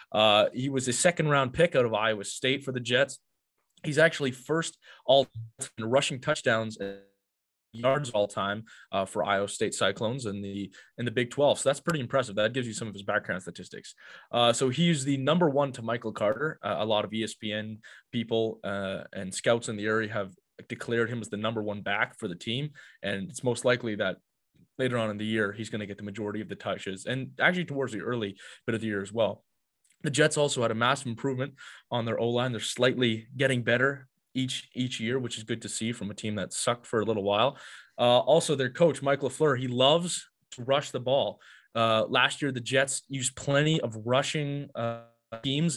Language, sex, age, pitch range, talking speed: English, male, 20-39, 110-135 Hz, 215 wpm